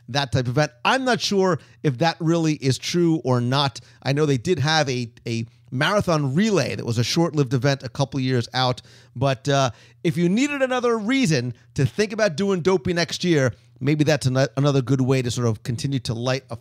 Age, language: 40-59, English